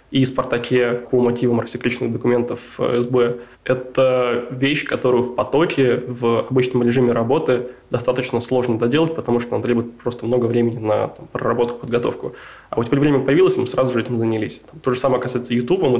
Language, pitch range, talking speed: Russian, 115-130 Hz, 175 wpm